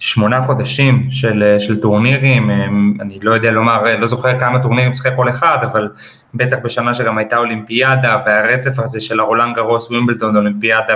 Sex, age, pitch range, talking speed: male, 20-39, 115-135 Hz, 165 wpm